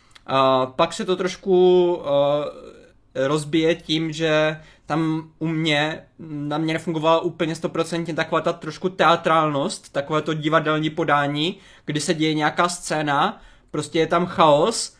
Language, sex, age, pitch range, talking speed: Czech, male, 20-39, 150-165 Hz, 135 wpm